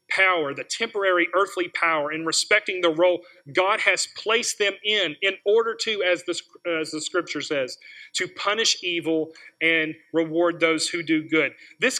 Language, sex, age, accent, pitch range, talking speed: English, male, 40-59, American, 180-260 Hz, 165 wpm